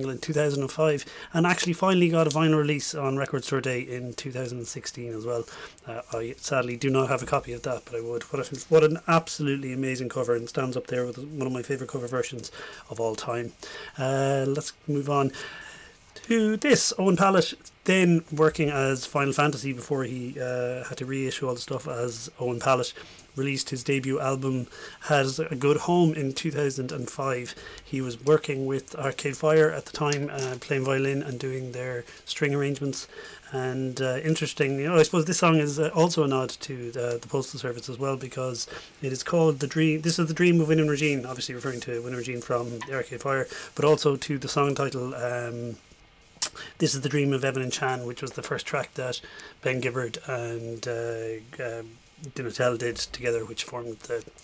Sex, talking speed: male, 195 wpm